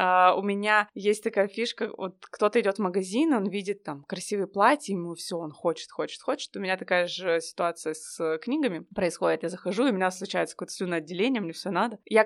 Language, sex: Russian, female